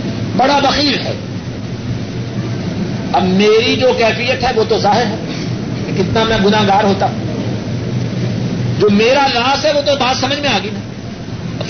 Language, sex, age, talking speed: Urdu, male, 60-79, 150 wpm